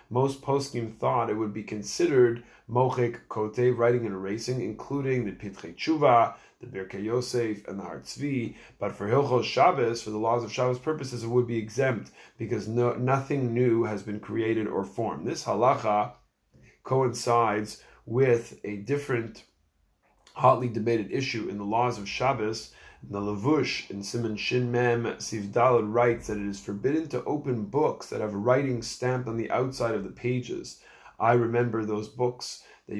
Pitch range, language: 110-125 Hz, English